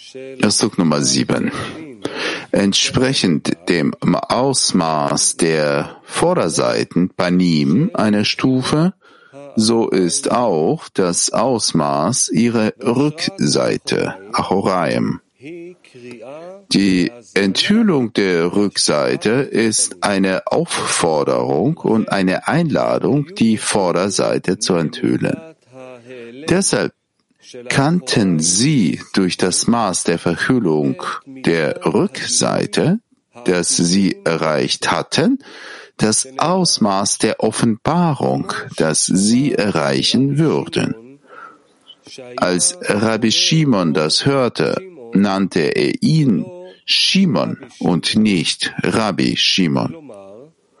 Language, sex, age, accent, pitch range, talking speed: German, male, 50-69, German, 100-160 Hz, 80 wpm